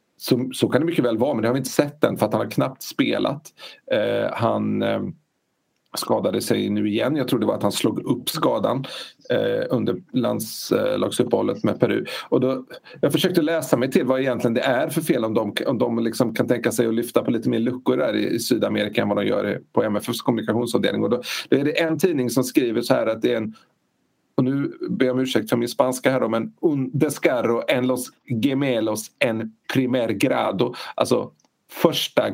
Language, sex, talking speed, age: Swedish, male, 215 wpm, 40-59